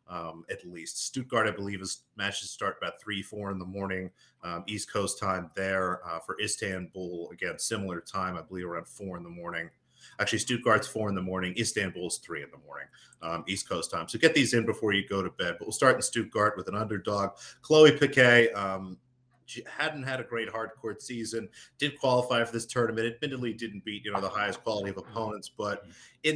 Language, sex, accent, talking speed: English, male, American, 205 wpm